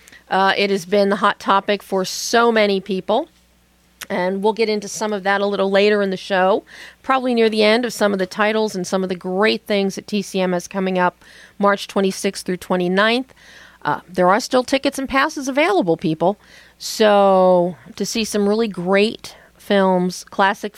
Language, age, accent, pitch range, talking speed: English, 40-59, American, 170-205 Hz, 190 wpm